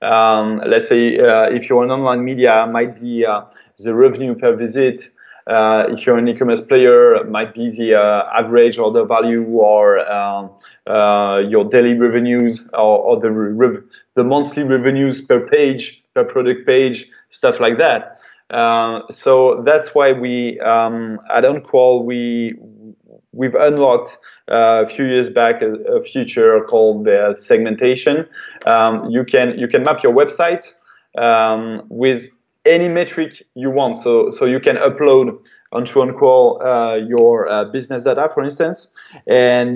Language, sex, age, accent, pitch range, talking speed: English, male, 20-39, French, 115-155 Hz, 160 wpm